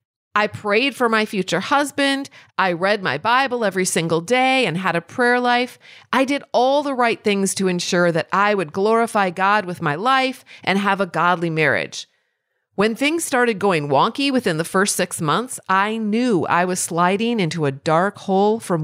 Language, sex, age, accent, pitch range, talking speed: English, female, 40-59, American, 165-225 Hz, 190 wpm